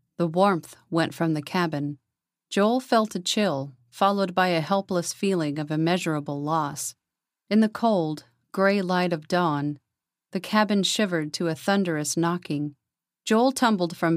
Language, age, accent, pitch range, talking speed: English, 40-59, American, 145-190 Hz, 150 wpm